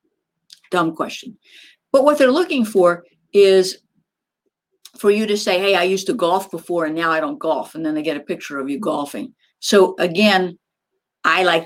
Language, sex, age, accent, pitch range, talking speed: English, female, 60-79, American, 165-245 Hz, 185 wpm